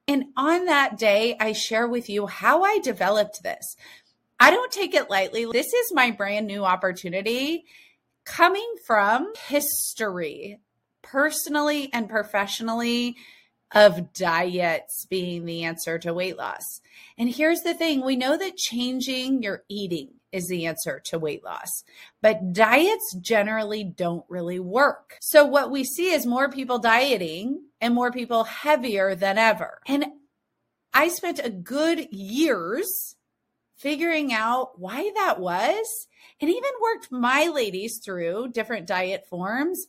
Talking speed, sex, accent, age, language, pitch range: 140 wpm, female, American, 30-49, English, 195-290 Hz